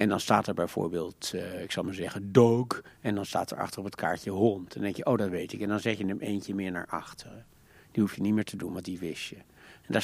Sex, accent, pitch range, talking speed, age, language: male, Dutch, 100-130 Hz, 300 wpm, 60-79, Dutch